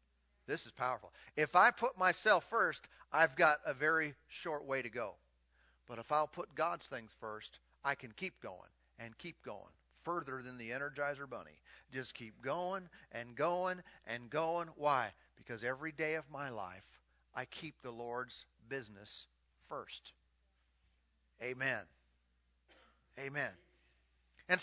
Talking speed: 140 wpm